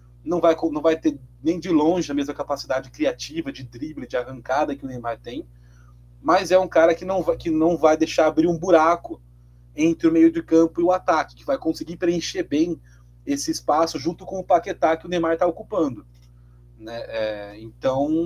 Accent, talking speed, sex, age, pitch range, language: Brazilian, 200 wpm, male, 30-49, 115-170 Hz, Portuguese